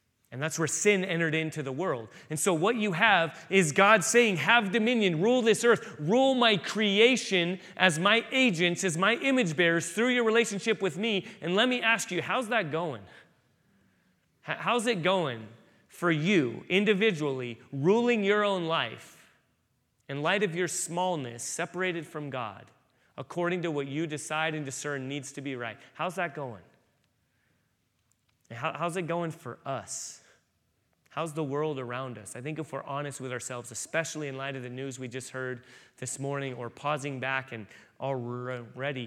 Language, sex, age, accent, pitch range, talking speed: English, male, 30-49, American, 125-175 Hz, 165 wpm